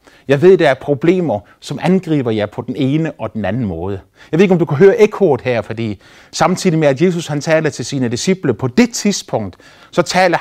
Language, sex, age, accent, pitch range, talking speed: Danish, male, 30-49, native, 130-190 Hz, 230 wpm